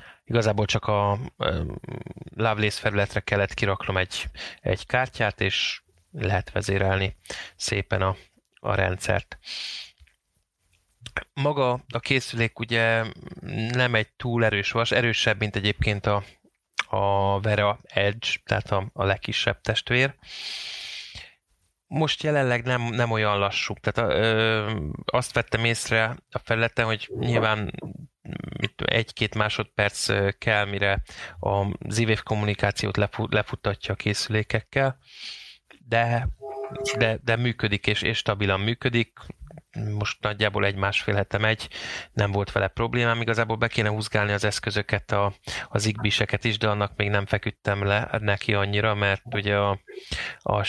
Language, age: Hungarian, 20-39